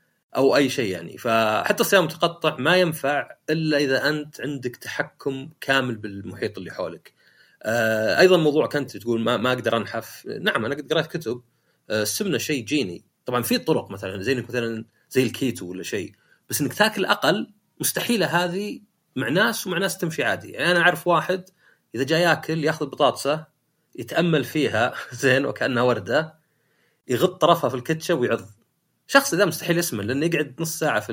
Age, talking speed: 30-49, 160 wpm